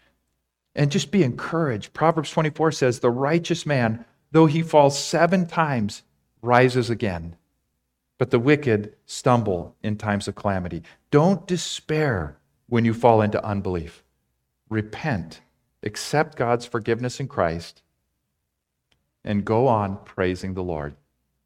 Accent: American